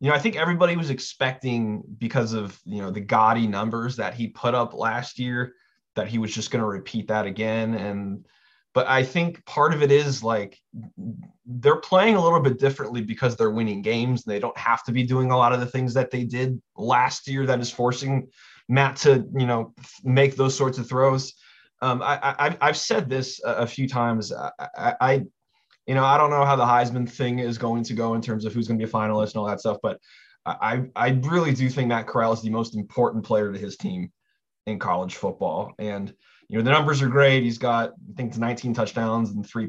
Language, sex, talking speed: English, male, 225 wpm